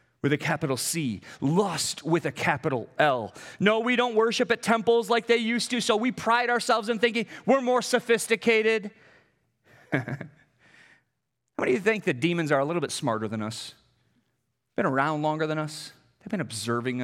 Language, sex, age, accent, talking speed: English, male, 30-49, American, 175 wpm